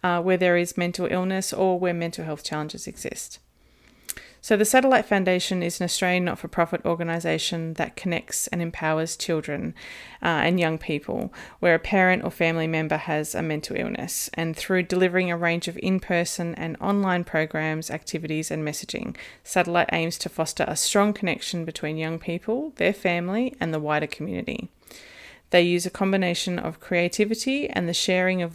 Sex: female